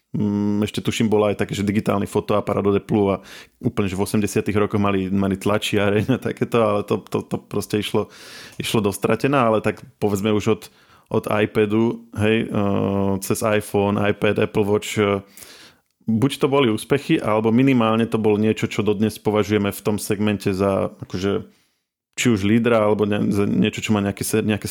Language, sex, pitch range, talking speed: Slovak, male, 100-110 Hz, 170 wpm